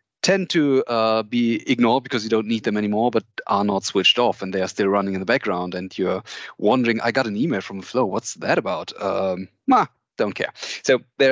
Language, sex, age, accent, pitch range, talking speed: English, male, 30-49, German, 100-125 Hz, 235 wpm